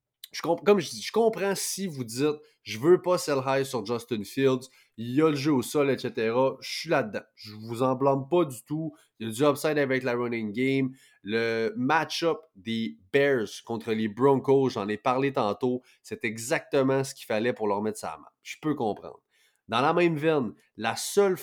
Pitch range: 115-145 Hz